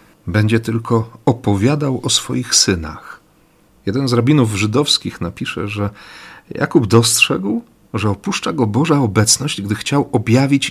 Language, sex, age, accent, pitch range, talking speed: Polish, male, 40-59, native, 95-120 Hz, 125 wpm